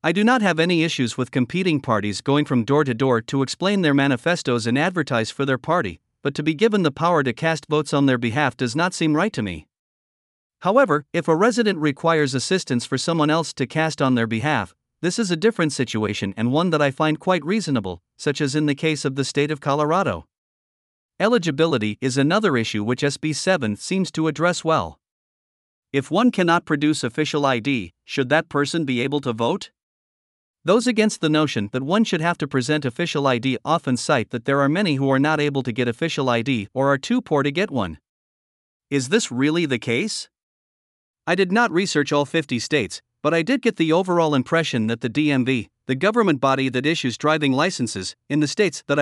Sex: male